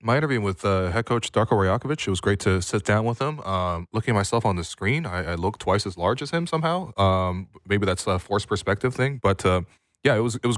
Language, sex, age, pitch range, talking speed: English, male, 20-39, 85-105 Hz, 260 wpm